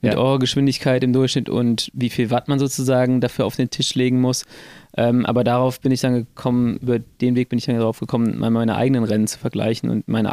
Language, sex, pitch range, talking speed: German, male, 115-135 Hz, 220 wpm